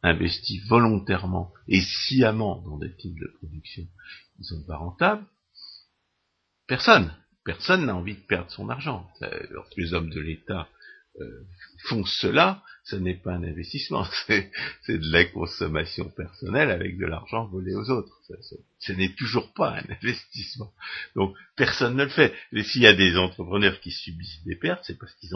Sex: male